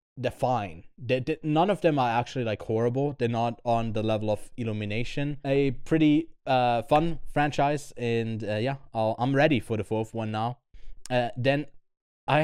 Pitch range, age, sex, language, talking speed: 110-135 Hz, 20-39, male, English, 180 wpm